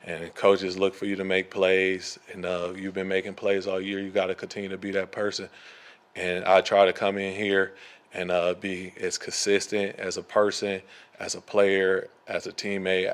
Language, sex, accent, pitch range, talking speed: English, male, American, 95-100 Hz, 205 wpm